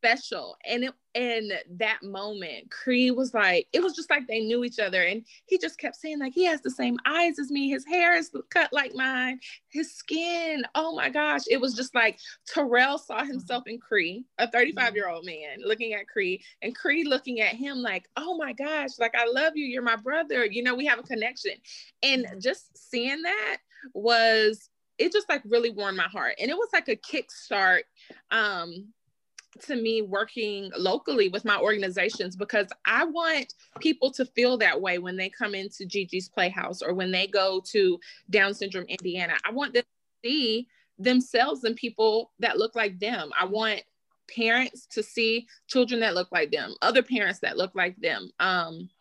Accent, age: American, 20-39